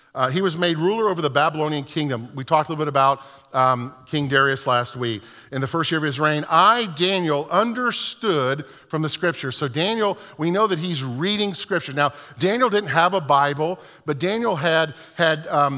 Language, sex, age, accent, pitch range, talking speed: English, male, 50-69, American, 135-185 Hz, 200 wpm